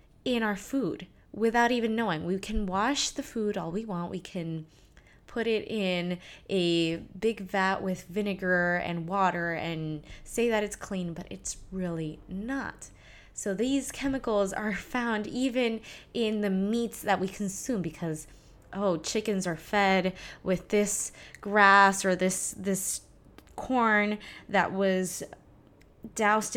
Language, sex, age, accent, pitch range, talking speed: English, female, 20-39, American, 175-220 Hz, 140 wpm